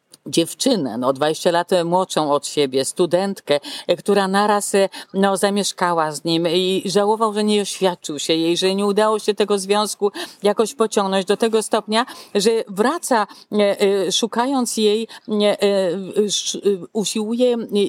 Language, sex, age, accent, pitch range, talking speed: Polish, female, 50-69, native, 185-235 Hz, 125 wpm